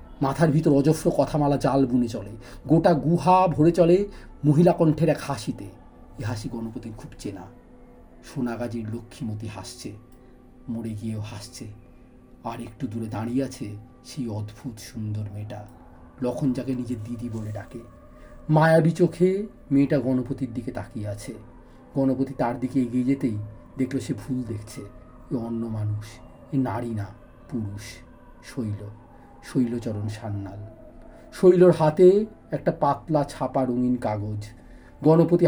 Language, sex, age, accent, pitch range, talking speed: Bengali, male, 40-59, native, 115-150 Hz, 125 wpm